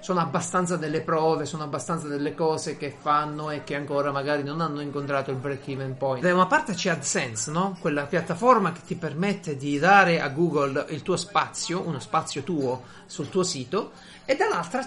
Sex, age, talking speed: male, 30-49, 185 wpm